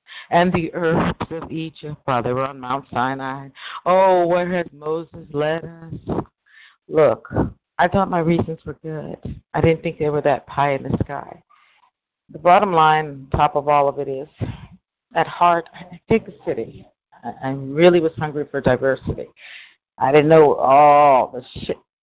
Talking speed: 165 wpm